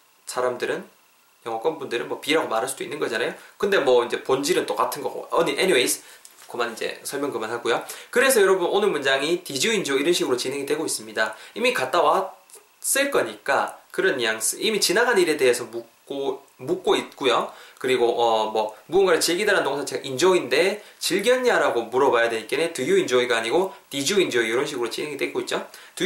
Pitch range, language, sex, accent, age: 315-475 Hz, Korean, male, native, 20-39